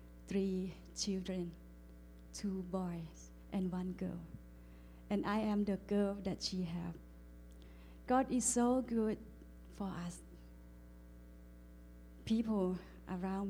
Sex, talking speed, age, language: female, 100 wpm, 30-49, English